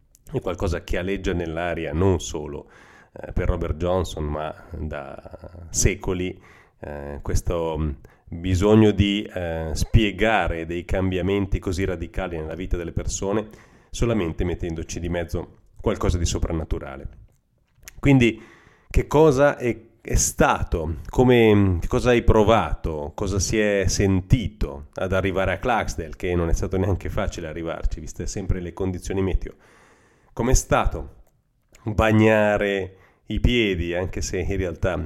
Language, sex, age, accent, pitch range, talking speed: Italian, male, 30-49, native, 85-105 Hz, 130 wpm